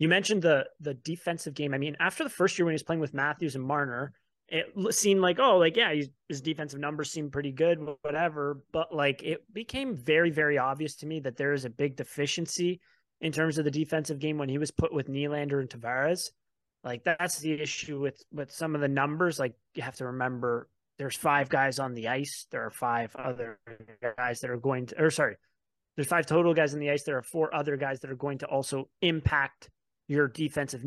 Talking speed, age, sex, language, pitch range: 225 wpm, 30-49, male, English, 135-165 Hz